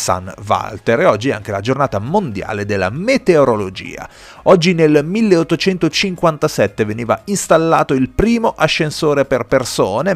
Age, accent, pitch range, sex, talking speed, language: 30-49, native, 100-145 Hz, male, 125 wpm, Italian